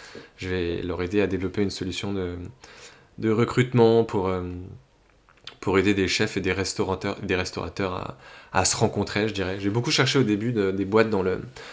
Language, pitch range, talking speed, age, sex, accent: French, 95-115 Hz, 195 wpm, 20-39, male, French